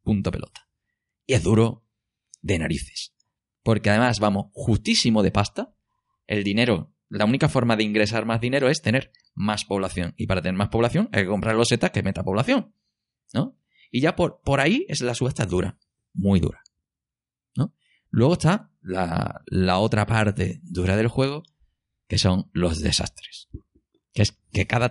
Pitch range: 100-135 Hz